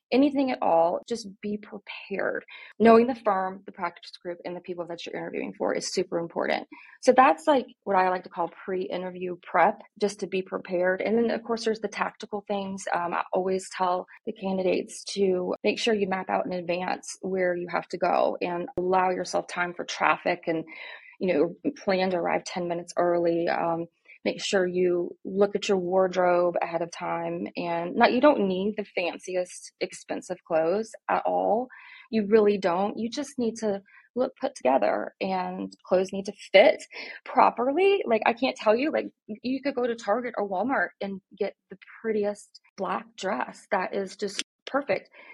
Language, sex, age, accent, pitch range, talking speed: English, female, 30-49, American, 180-235 Hz, 185 wpm